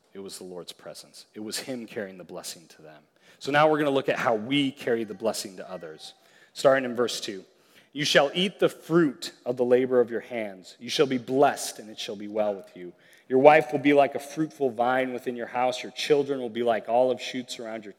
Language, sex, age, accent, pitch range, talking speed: English, male, 30-49, American, 120-145 Hz, 245 wpm